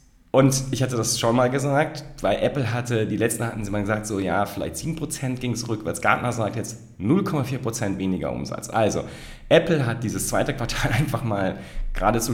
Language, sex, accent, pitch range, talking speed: German, male, German, 90-125 Hz, 185 wpm